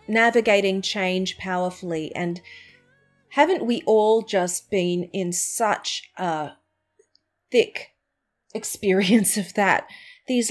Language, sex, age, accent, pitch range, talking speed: English, female, 30-49, Australian, 185-230 Hz, 95 wpm